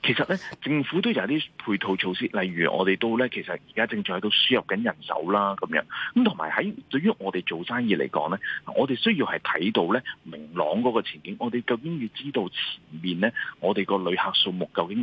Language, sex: Chinese, male